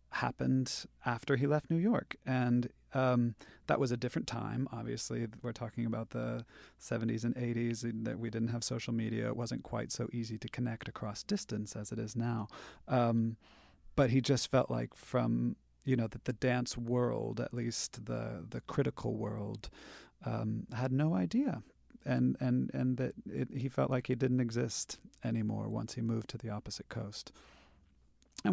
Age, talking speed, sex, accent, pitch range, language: 40-59, 175 wpm, male, American, 110-130 Hz, English